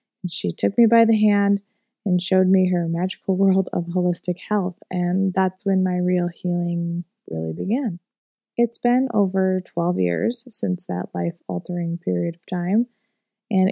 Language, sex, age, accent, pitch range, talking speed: English, female, 20-39, American, 175-215 Hz, 155 wpm